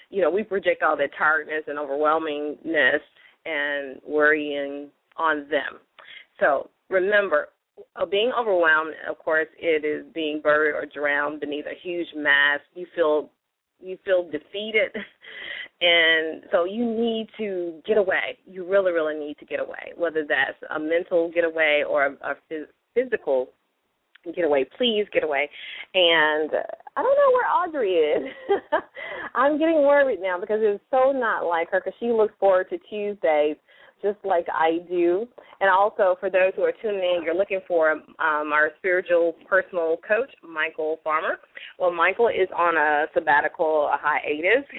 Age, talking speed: 30-49, 155 wpm